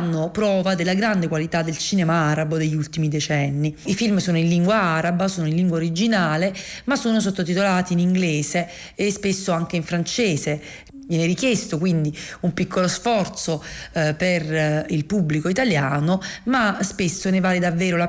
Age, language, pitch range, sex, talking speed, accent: 40-59, Italian, 165-200 Hz, female, 160 wpm, native